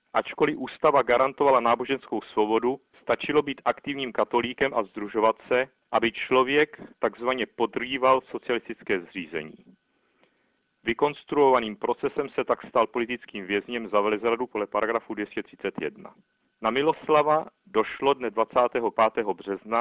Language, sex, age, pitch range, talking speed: Czech, male, 40-59, 110-135 Hz, 110 wpm